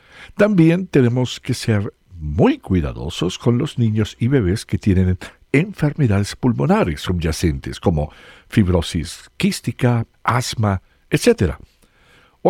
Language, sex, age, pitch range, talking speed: English, male, 60-79, 90-135 Hz, 105 wpm